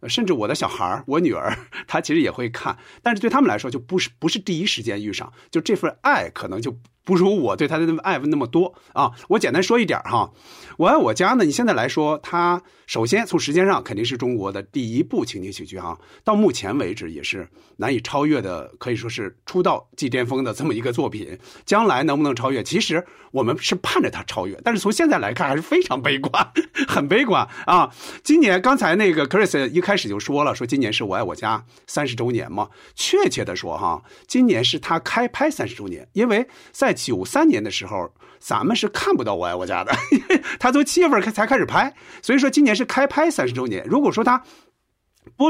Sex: male